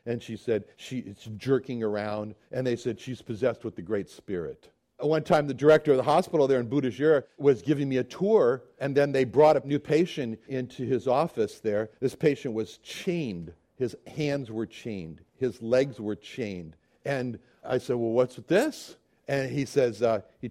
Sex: male